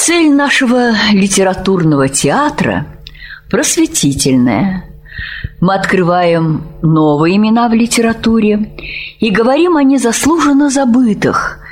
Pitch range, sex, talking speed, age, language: 165-255 Hz, female, 80 wpm, 50-69, Russian